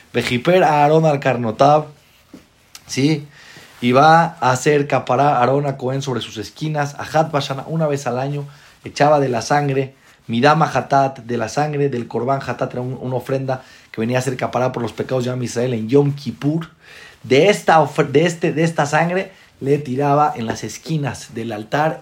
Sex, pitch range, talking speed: male, 120-145 Hz, 185 wpm